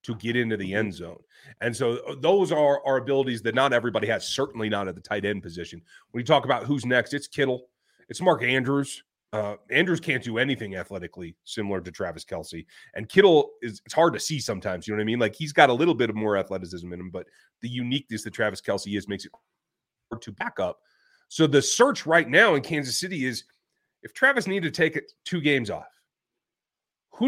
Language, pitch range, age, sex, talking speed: English, 110-155 Hz, 30-49, male, 220 wpm